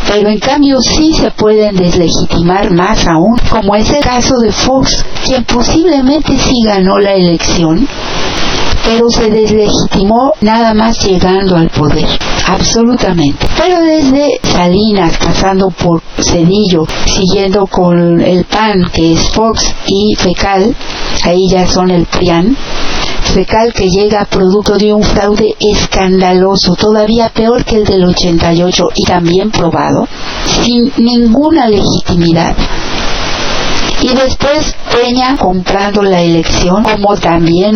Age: 50-69